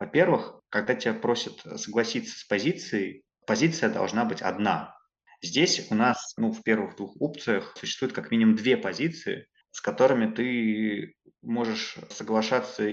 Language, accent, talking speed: Russian, native, 135 wpm